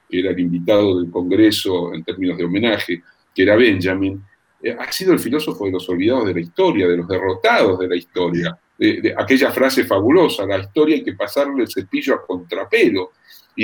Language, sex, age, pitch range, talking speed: Spanish, male, 40-59, 95-155 Hz, 200 wpm